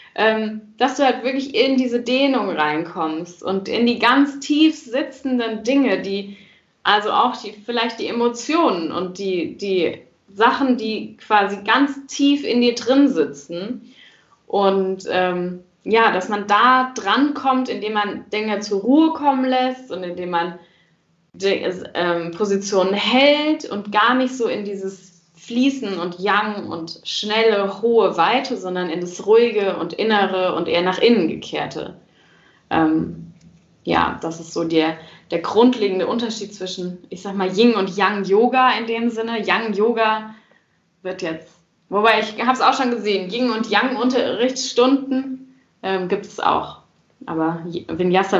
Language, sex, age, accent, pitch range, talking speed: German, female, 10-29, German, 180-240 Hz, 150 wpm